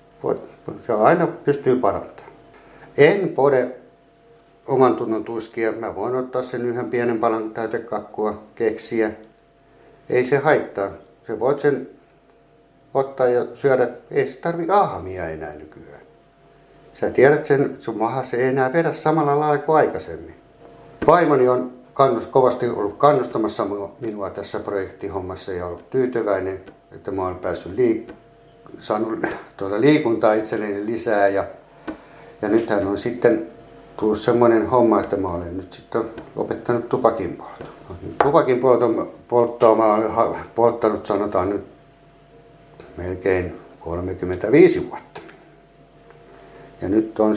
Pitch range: 100-130 Hz